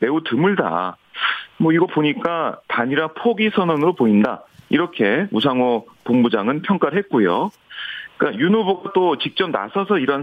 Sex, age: male, 40-59